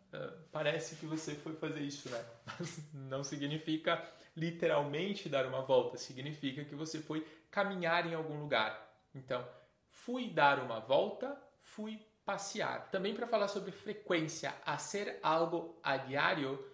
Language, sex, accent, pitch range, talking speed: Portuguese, male, Brazilian, 130-165 Hz, 140 wpm